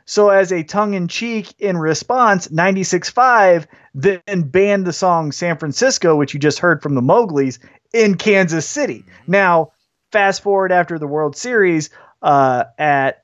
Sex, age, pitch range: male, 30-49, 145-190 Hz